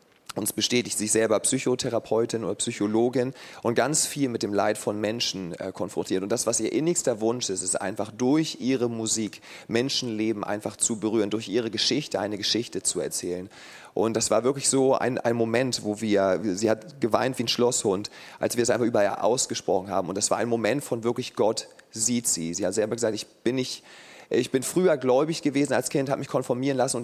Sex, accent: male, German